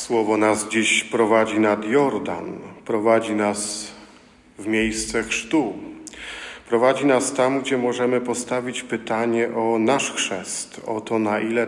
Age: 40-59